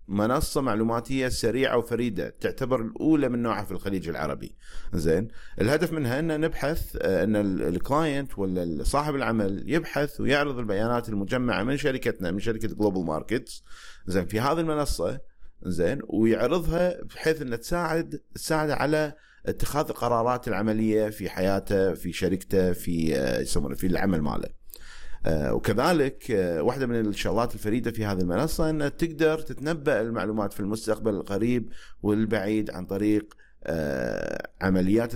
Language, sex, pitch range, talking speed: Arabic, male, 100-140 Hz, 125 wpm